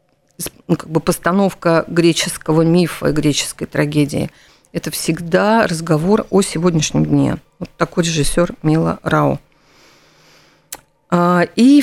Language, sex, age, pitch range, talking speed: Russian, female, 50-69, 160-210 Hz, 100 wpm